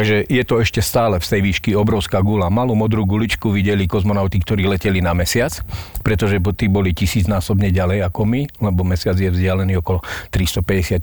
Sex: male